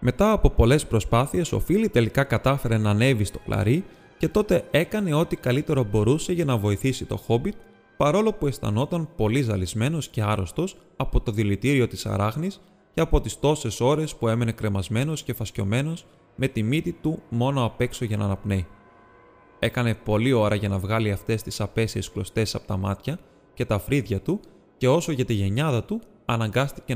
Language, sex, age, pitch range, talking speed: Greek, male, 20-39, 105-135 Hz, 175 wpm